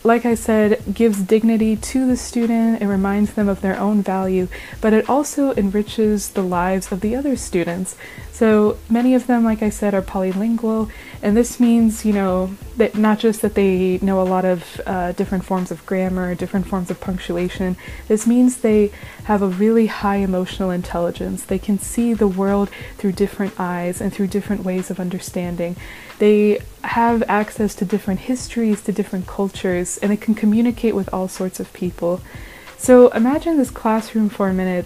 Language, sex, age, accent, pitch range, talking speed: English, female, 20-39, American, 185-225 Hz, 180 wpm